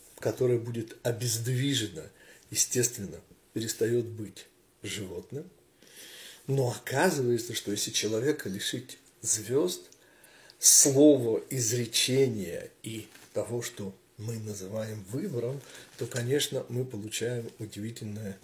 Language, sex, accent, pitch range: Russian, male, native, 105-125 Hz